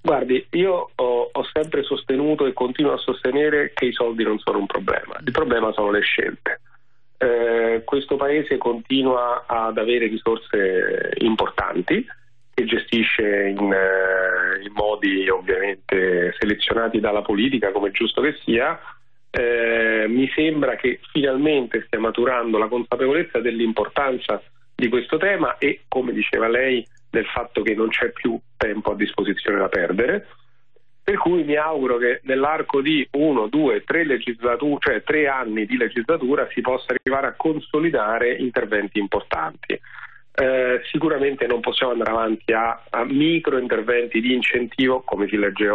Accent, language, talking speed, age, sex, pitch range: native, Italian, 145 wpm, 40-59, male, 110-140 Hz